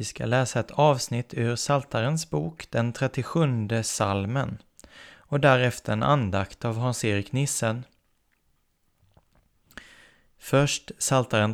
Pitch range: 110-145 Hz